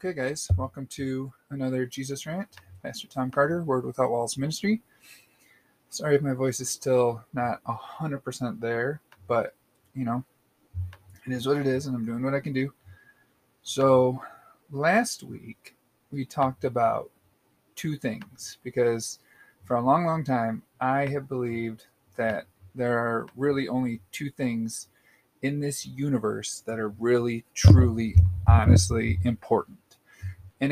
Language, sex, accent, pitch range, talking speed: English, male, American, 110-140 Hz, 140 wpm